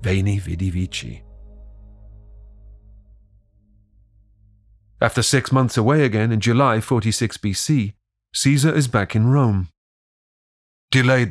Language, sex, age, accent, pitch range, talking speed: English, male, 40-59, British, 105-125 Hz, 95 wpm